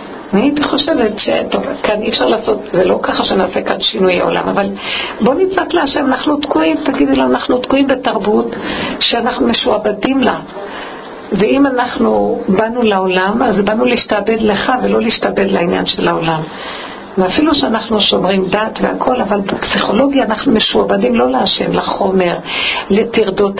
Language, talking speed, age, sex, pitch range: Hebrew, 140 wpm, 50-69, female, 200-270 Hz